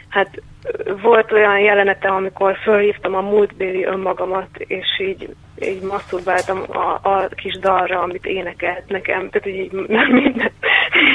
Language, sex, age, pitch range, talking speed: Hungarian, female, 20-39, 190-230 Hz, 135 wpm